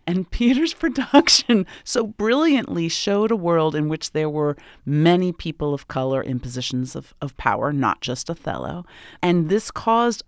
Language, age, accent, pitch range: English, 40-59, American, 140-185 Hz